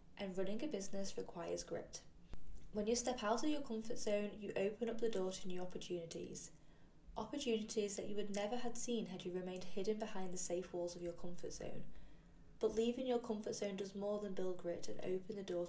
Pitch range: 185-220 Hz